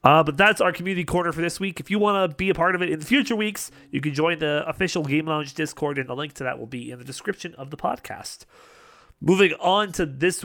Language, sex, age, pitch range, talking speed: English, male, 30-49, 135-170 Hz, 265 wpm